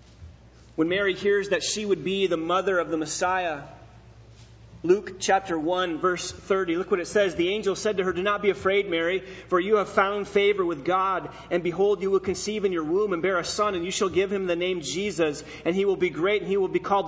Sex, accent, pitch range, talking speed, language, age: male, American, 155-210 Hz, 240 wpm, English, 30-49